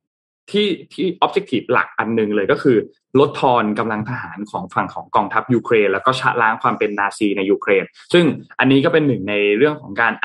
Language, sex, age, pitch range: Thai, male, 20-39, 105-135 Hz